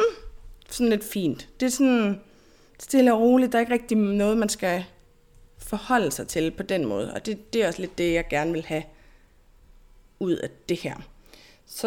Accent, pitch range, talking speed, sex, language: native, 175-235 Hz, 190 wpm, female, Danish